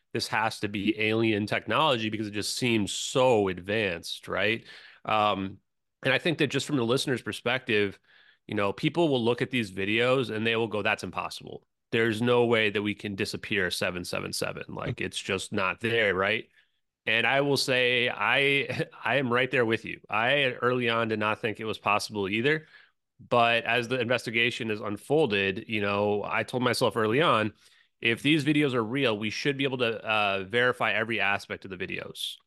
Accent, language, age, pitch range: American, English, 30-49, 105-130 Hz